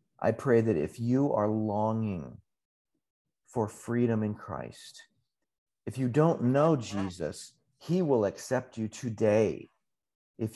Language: English